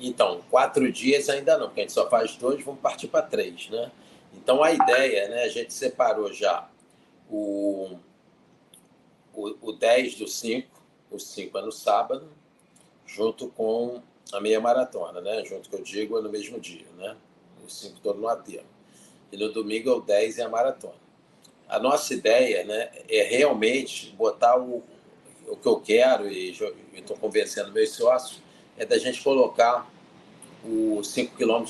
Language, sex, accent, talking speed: Portuguese, male, Brazilian, 170 wpm